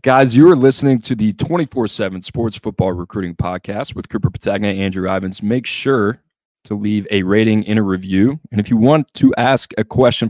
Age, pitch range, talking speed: 20-39, 90-110 Hz, 190 wpm